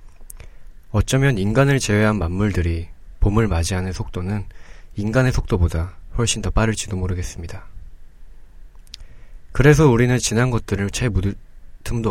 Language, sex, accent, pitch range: Korean, male, native, 80-110 Hz